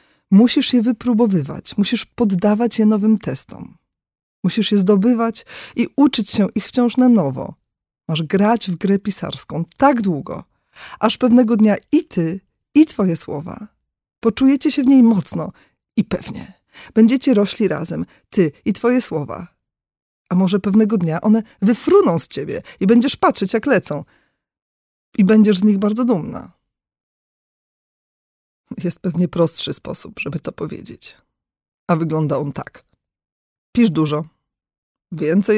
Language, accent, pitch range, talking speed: Polish, native, 175-235 Hz, 135 wpm